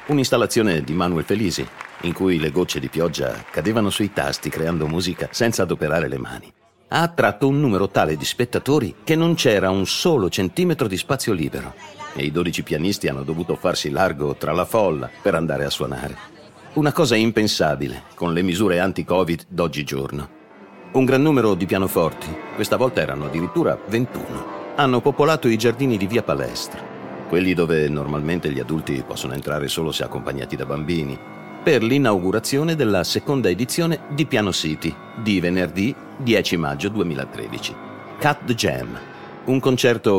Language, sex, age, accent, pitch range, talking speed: Italian, male, 50-69, native, 75-115 Hz, 155 wpm